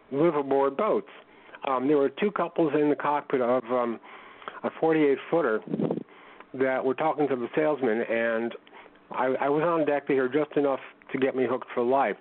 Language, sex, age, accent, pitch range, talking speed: English, male, 60-79, American, 125-140 Hz, 170 wpm